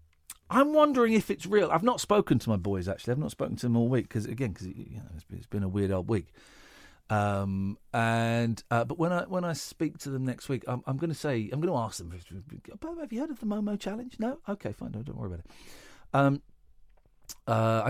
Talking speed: 240 wpm